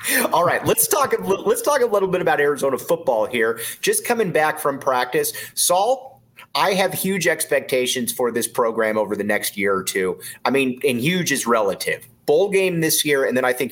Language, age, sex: English, 30-49, male